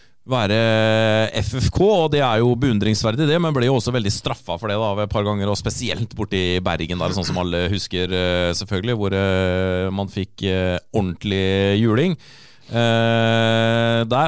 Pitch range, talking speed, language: 95-115 Hz, 160 wpm, English